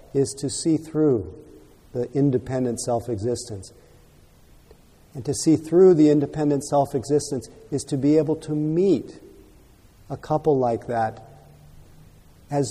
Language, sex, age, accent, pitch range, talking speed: English, male, 50-69, American, 120-155 Hz, 120 wpm